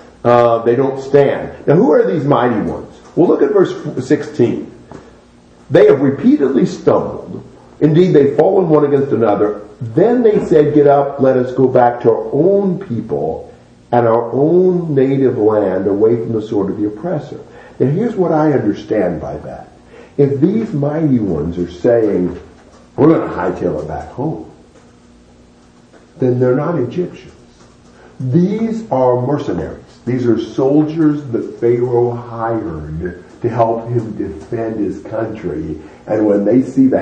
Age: 50-69